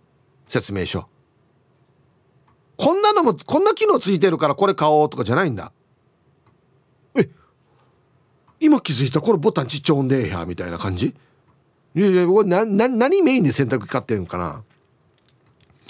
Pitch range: 130-180 Hz